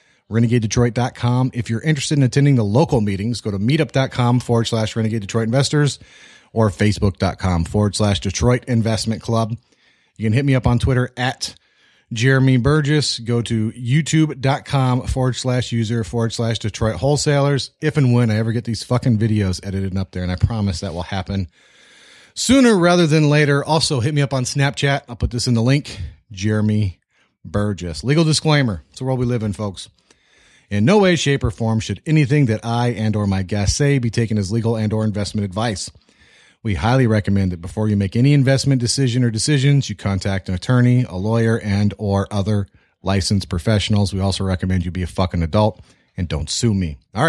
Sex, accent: male, American